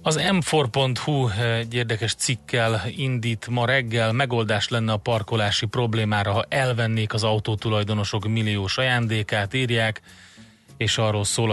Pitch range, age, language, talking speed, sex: 105-120 Hz, 30-49, Hungarian, 120 wpm, male